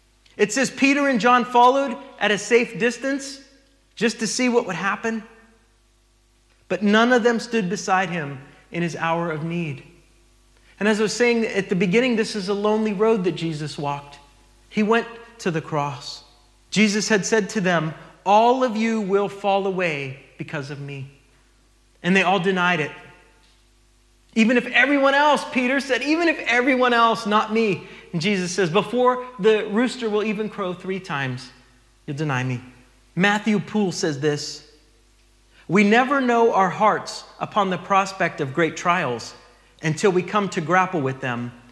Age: 30-49